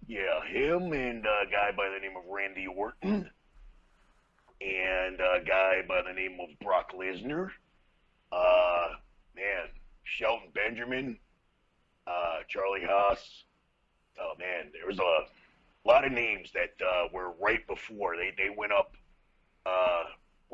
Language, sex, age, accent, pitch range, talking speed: English, male, 40-59, American, 90-100 Hz, 130 wpm